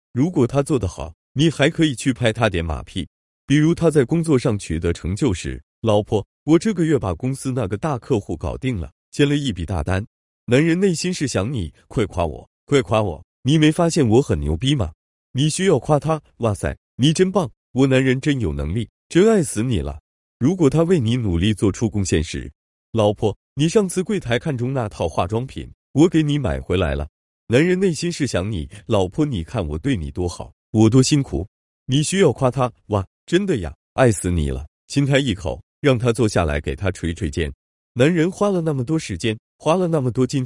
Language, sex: Chinese, male